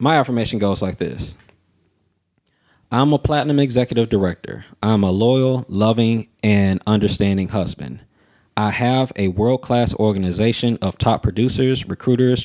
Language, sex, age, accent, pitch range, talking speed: English, male, 20-39, American, 100-115 Hz, 125 wpm